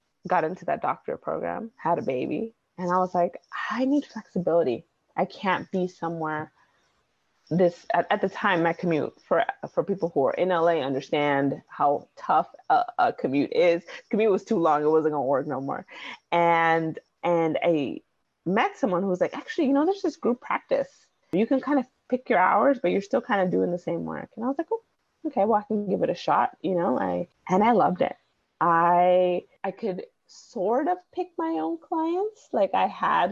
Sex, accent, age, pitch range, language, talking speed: female, American, 20-39, 175-270 Hz, English, 205 wpm